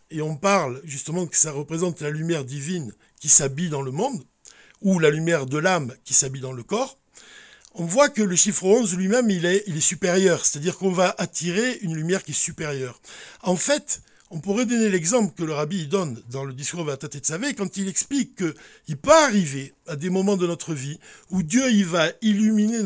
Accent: French